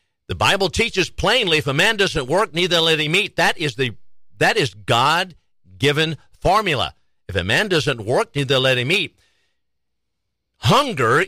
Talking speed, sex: 160 wpm, male